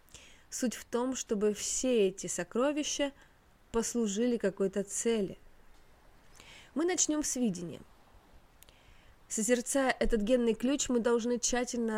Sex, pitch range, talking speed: female, 200-260 Hz, 105 wpm